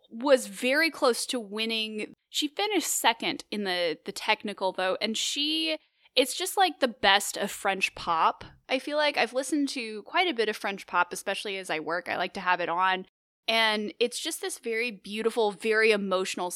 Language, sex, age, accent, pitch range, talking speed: English, female, 10-29, American, 215-310 Hz, 190 wpm